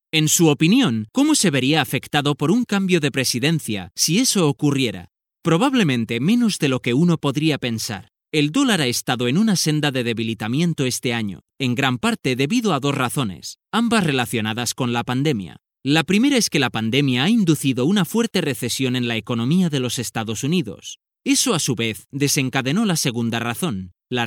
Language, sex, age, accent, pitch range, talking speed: Spanish, male, 30-49, Spanish, 120-165 Hz, 180 wpm